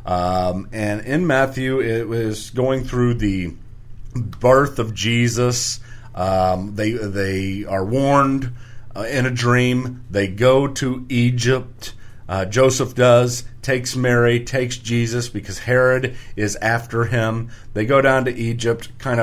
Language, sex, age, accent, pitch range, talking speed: English, male, 40-59, American, 105-125 Hz, 135 wpm